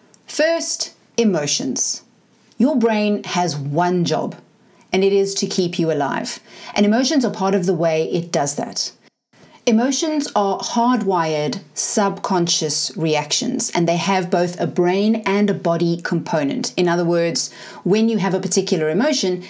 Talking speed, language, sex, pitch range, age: 150 wpm, English, female, 170-225 Hz, 40-59